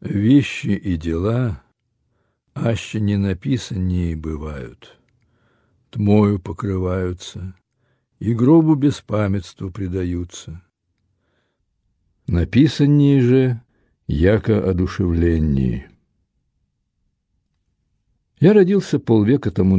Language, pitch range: Russian, 90-125 Hz